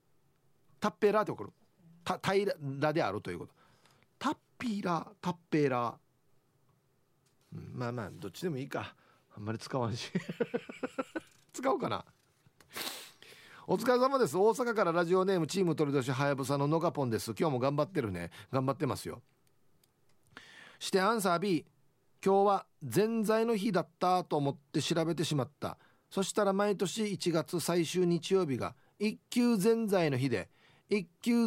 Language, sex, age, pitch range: Japanese, male, 40-59, 135-190 Hz